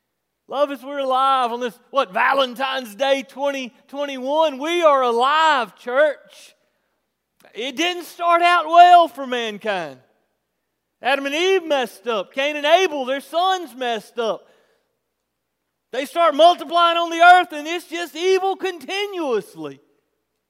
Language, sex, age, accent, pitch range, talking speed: English, male, 40-59, American, 215-315 Hz, 130 wpm